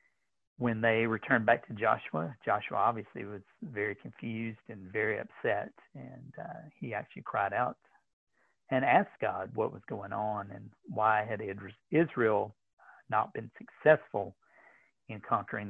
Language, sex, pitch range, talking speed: English, male, 100-115 Hz, 140 wpm